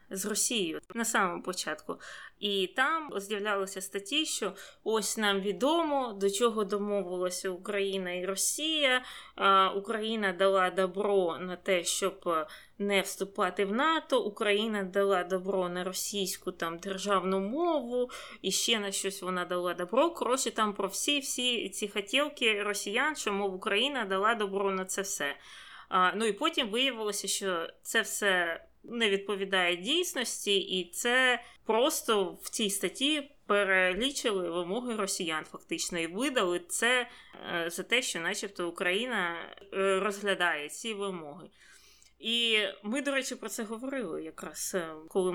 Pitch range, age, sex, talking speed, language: 185-230 Hz, 20-39, female, 130 wpm, Ukrainian